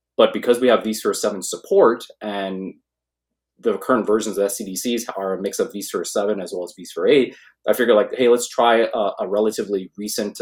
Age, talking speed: 20-39, 195 wpm